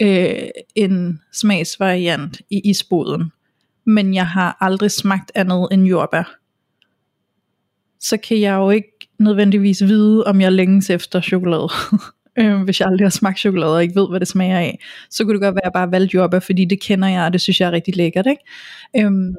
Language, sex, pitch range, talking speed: Danish, female, 190-215 Hz, 185 wpm